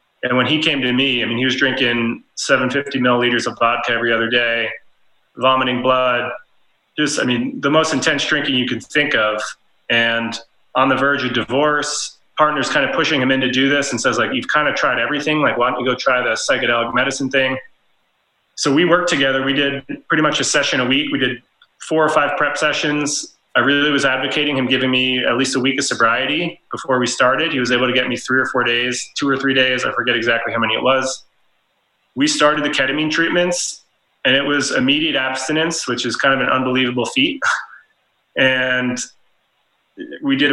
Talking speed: 205 wpm